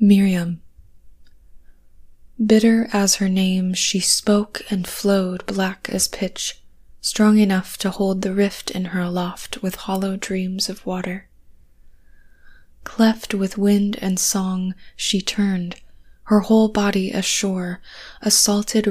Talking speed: 125 wpm